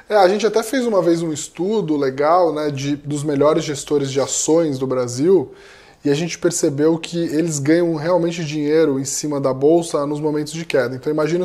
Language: English